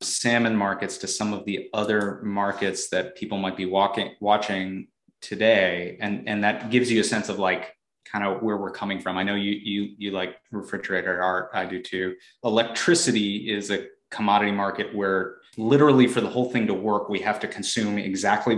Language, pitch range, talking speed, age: English, 95-115 Hz, 190 wpm, 30-49